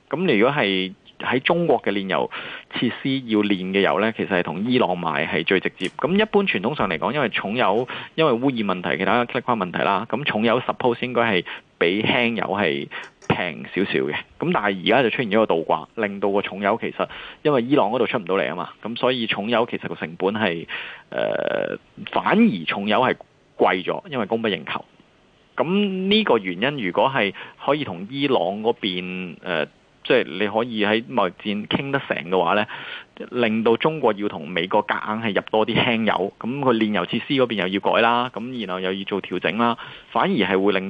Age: 20-39